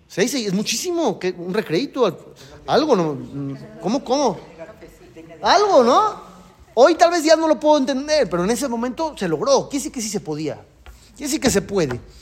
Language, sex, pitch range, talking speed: Spanish, male, 180-250 Hz, 180 wpm